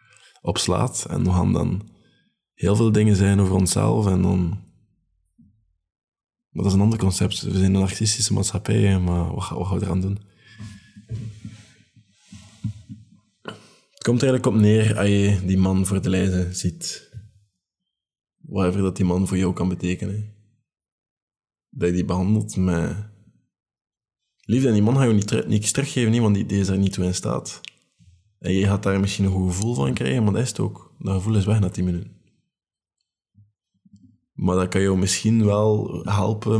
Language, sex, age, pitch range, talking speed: Dutch, male, 20-39, 90-110 Hz, 165 wpm